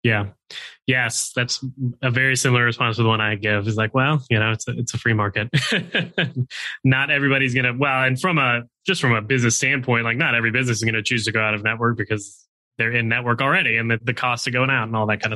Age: 20-39